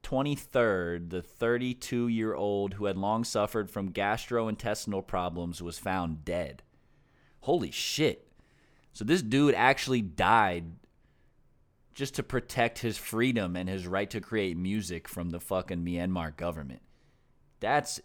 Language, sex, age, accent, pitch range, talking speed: English, male, 30-49, American, 95-125 Hz, 130 wpm